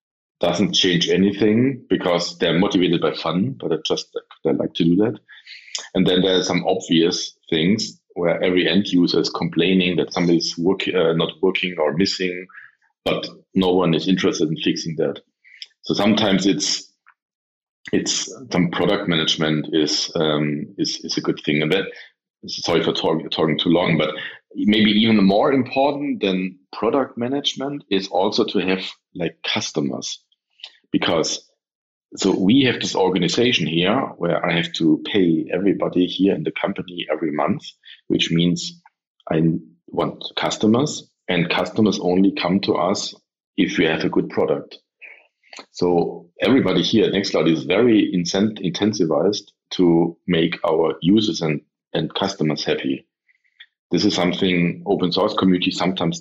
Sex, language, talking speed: male, English, 150 wpm